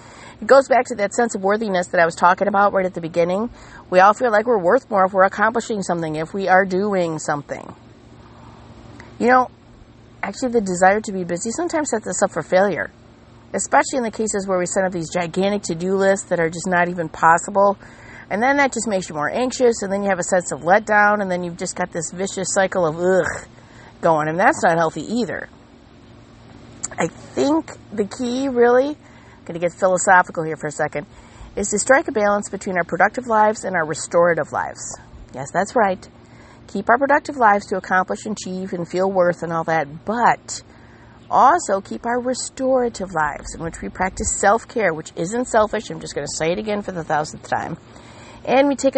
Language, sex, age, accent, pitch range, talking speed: English, female, 40-59, American, 170-220 Hz, 205 wpm